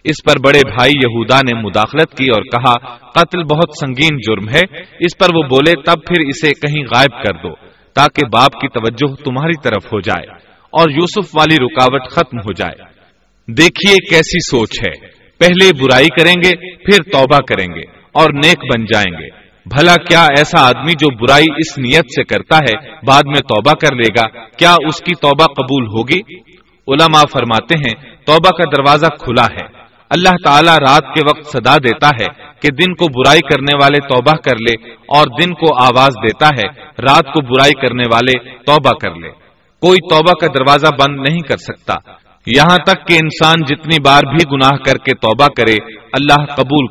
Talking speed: 180 wpm